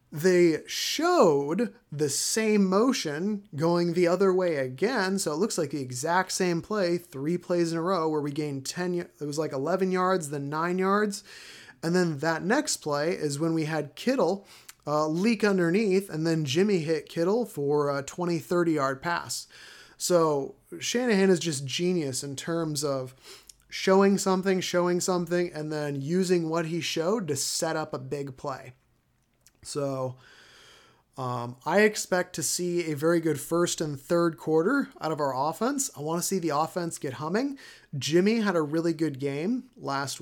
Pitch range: 145-185 Hz